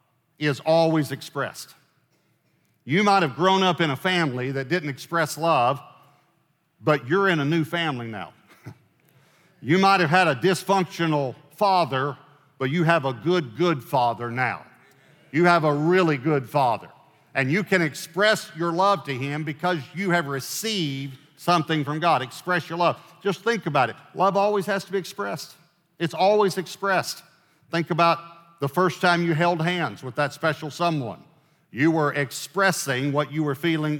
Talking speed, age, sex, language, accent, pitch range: 165 wpm, 50-69, male, English, American, 140-175 Hz